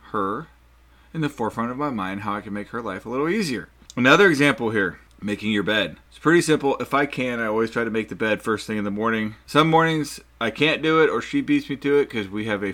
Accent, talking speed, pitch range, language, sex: American, 265 wpm, 105-140 Hz, English, male